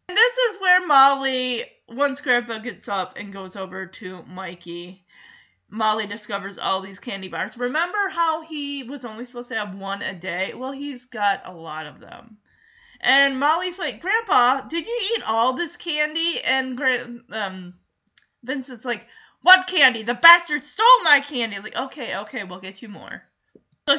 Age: 30-49